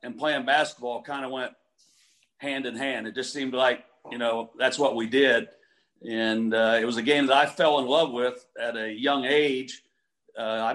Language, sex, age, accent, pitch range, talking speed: English, male, 50-69, American, 120-145 Hz, 205 wpm